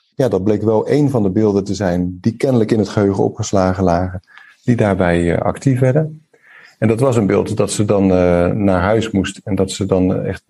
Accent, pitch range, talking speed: Dutch, 95-120 Hz, 210 wpm